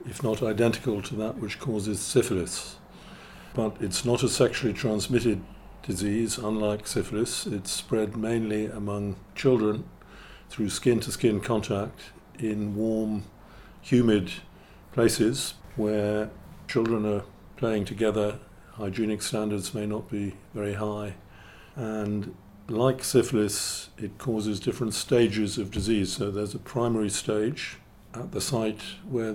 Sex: male